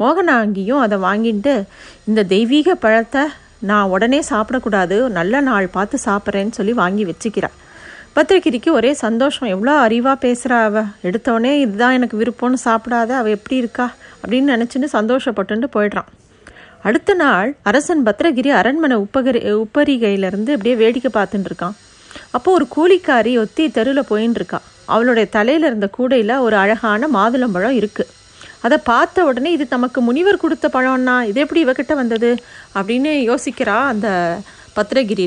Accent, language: native, Tamil